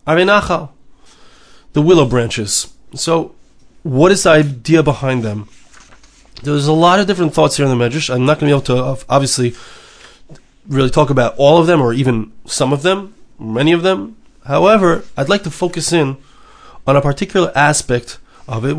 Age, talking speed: 30-49, 175 wpm